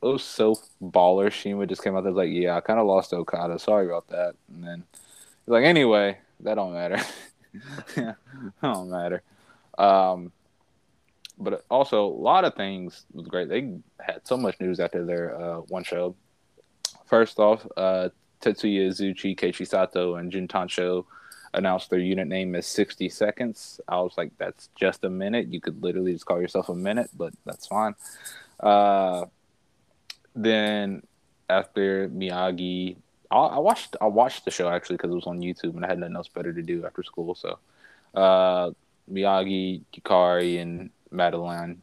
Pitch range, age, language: 85-95 Hz, 20-39, English